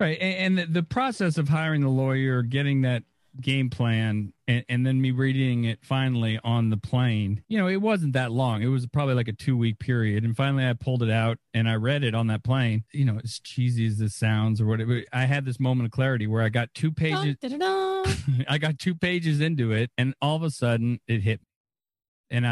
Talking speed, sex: 225 wpm, male